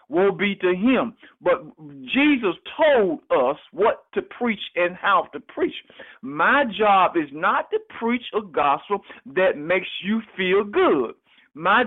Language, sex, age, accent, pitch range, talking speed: English, male, 50-69, American, 185-275 Hz, 145 wpm